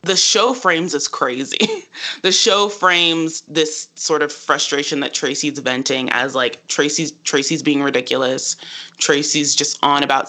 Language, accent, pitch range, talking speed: English, American, 140-165 Hz, 145 wpm